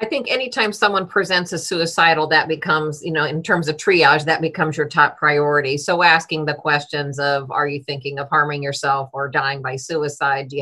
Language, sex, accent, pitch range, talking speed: English, female, American, 150-180 Hz, 210 wpm